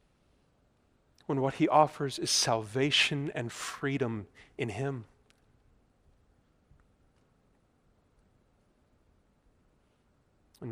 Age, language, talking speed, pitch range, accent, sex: 40-59, English, 60 wpm, 115-135 Hz, American, male